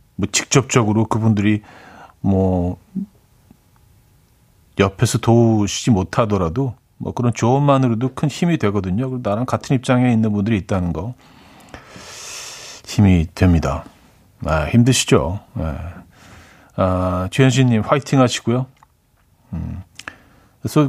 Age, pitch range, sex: 40-59, 100-130 Hz, male